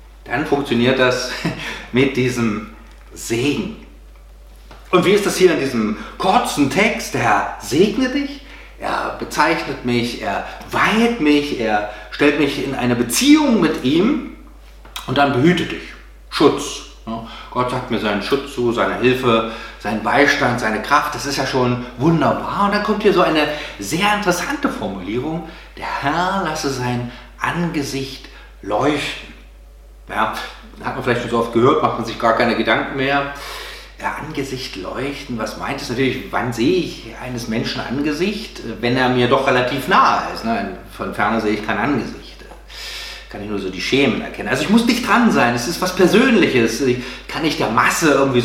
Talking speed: 165 wpm